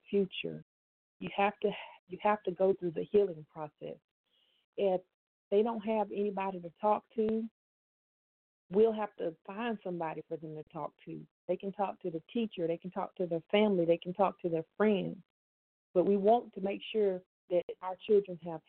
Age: 40-59